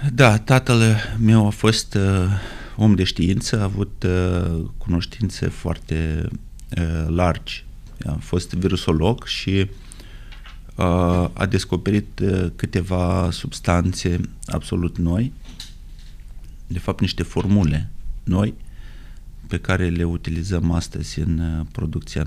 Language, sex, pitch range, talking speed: Romanian, male, 85-110 Hz, 110 wpm